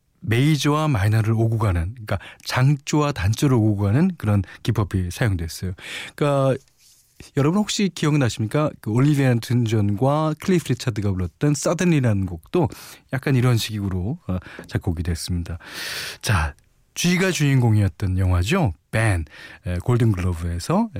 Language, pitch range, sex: Korean, 95-145 Hz, male